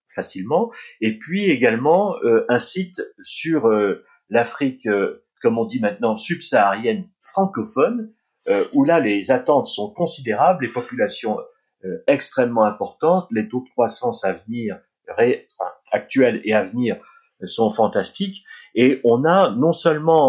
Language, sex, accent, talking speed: French, male, French, 140 wpm